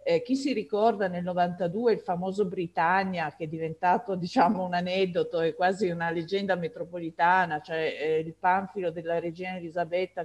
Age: 50-69